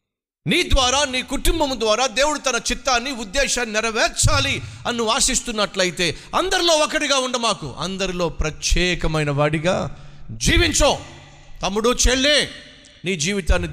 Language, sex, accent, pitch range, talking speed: Telugu, male, native, 170-260 Hz, 100 wpm